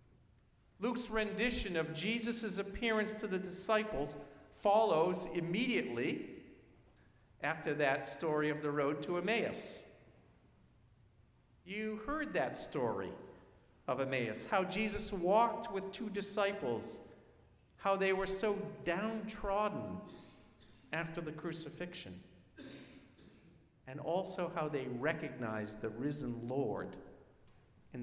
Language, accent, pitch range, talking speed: English, American, 125-200 Hz, 100 wpm